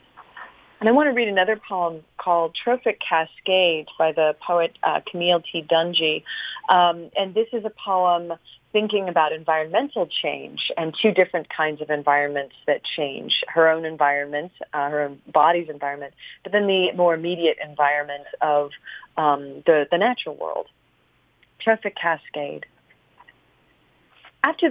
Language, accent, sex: English, American, female